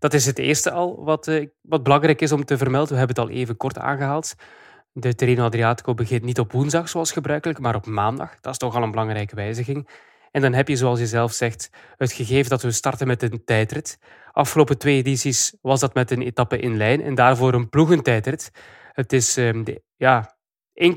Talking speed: 215 wpm